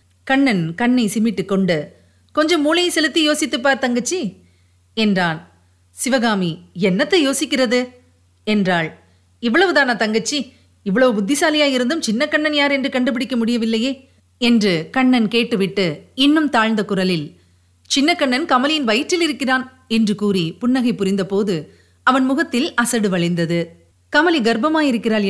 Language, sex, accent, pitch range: Tamil, female, native, 190-275 Hz